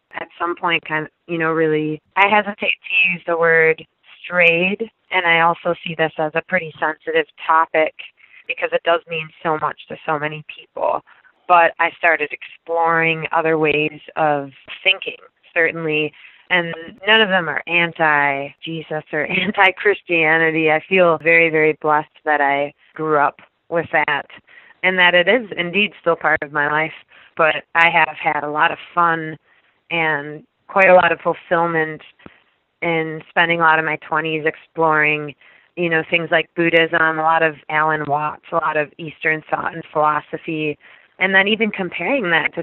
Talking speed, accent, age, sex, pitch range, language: 170 wpm, American, 20-39, female, 155-175 Hz, English